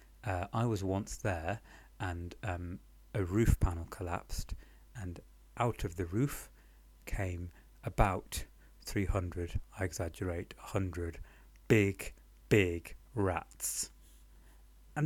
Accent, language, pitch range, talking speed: British, English, 85-115 Hz, 105 wpm